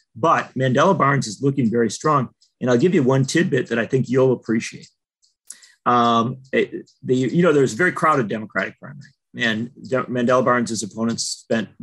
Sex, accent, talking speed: male, American, 185 wpm